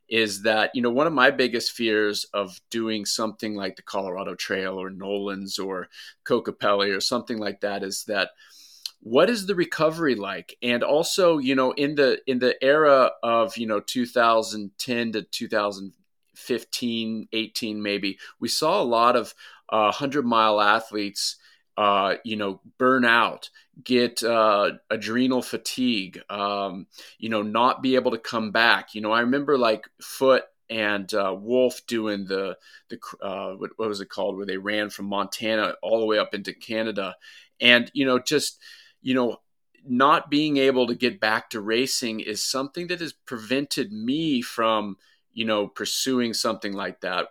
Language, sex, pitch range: English, male, 105-130 Hz